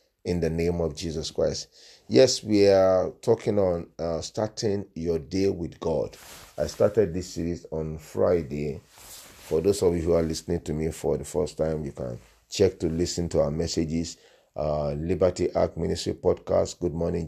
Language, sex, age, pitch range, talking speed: English, male, 40-59, 80-95 Hz, 175 wpm